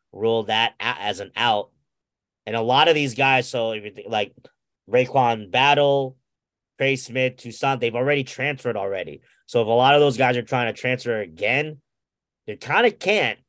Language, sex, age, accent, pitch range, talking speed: English, male, 30-49, American, 125-145 Hz, 180 wpm